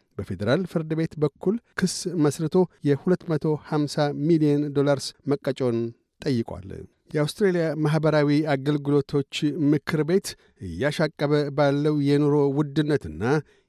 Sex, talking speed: male, 80 wpm